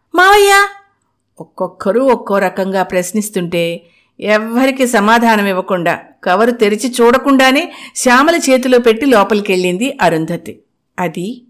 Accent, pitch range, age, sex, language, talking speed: native, 180-235 Hz, 50-69, female, Telugu, 85 wpm